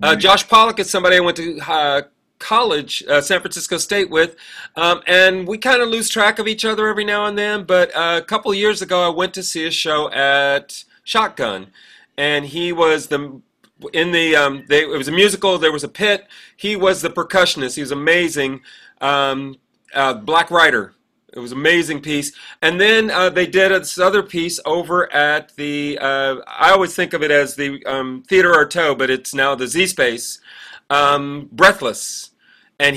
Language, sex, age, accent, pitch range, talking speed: English, male, 40-59, American, 145-190 Hz, 195 wpm